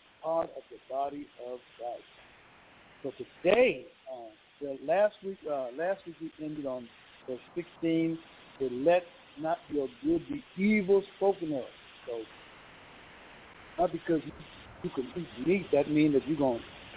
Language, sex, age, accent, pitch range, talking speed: English, male, 60-79, American, 145-195 Hz, 145 wpm